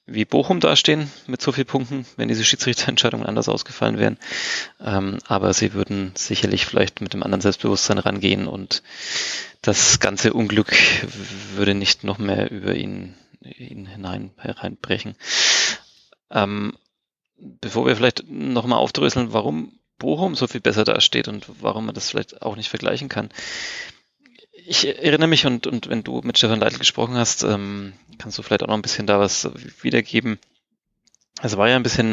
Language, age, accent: German, 30-49, German